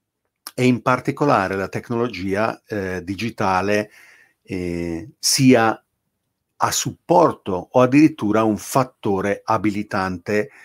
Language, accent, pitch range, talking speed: Italian, native, 100-120 Hz, 90 wpm